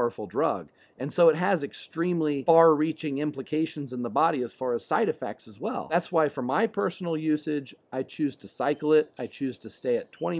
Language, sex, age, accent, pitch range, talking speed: English, male, 40-59, American, 115-145 Hz, 210 wpm